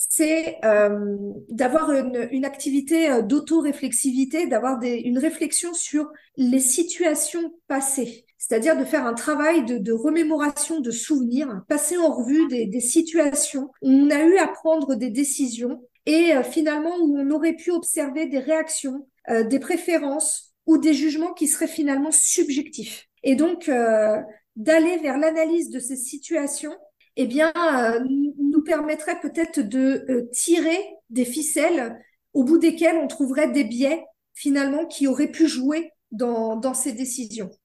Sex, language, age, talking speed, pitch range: female, French, 40-59, 155 wpm, 260-320 Hz